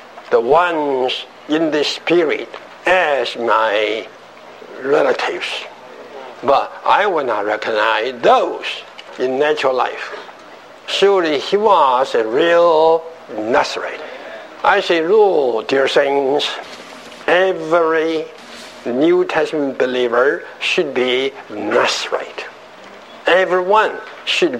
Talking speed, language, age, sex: 90 wpm, English, 60-79, male